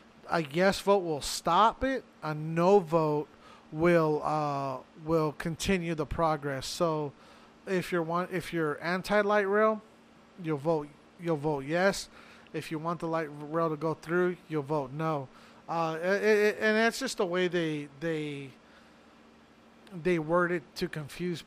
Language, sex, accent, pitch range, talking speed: English, male, American, 155-185 Hz, 155 wpm